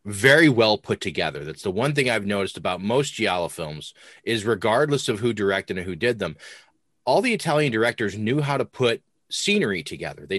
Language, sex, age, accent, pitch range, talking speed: English, male, 30-49, American, 105-140 Hz, 195 wpm